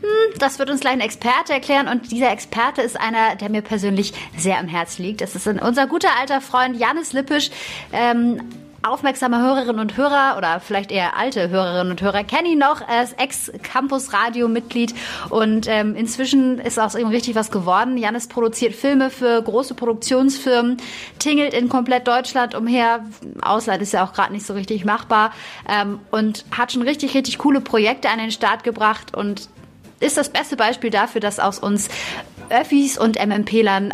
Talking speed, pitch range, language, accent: 170 wpm, 205-265 Hz, German, German